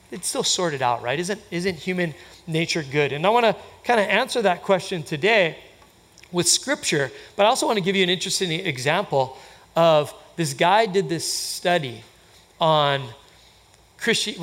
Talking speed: 165 wpm